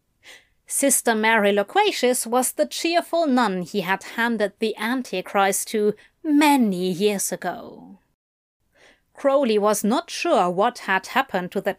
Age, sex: 30-49, female